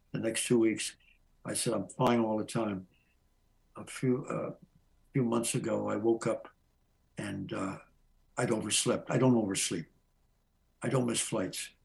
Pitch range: 115-130 Hz